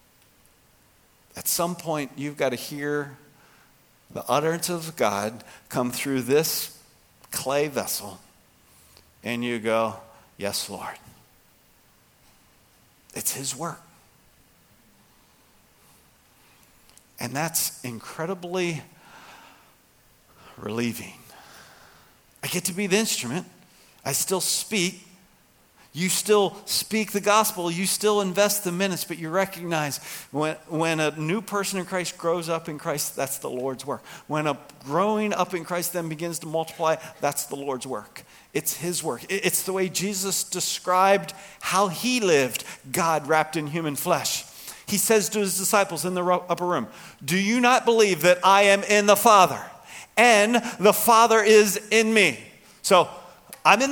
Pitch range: 150-200 Hz